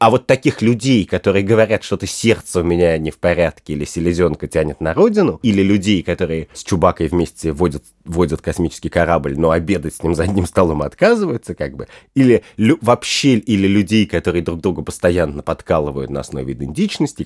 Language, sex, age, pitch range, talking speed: Russian, male, 30-49, 80-105 Hz, 175 wpm